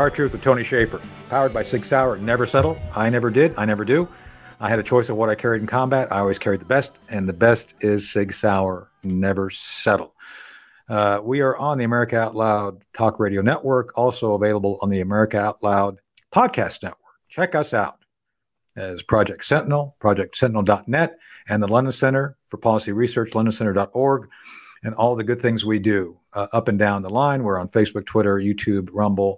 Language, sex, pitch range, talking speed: English, male, 100-125 Hz, 190 wpm